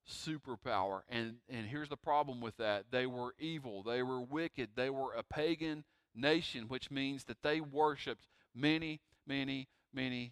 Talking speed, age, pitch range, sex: 155 wpm, 40-59, 110-140 Hz, male